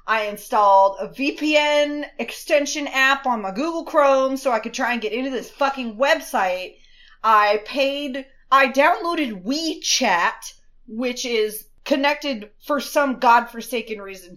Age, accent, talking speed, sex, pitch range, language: 30-49, American, 135 wpm, female, 220-285 Hz, English